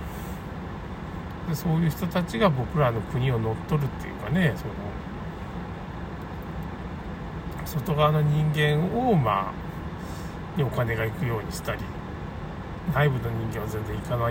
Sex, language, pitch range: male, Japanese, 115-180 Hz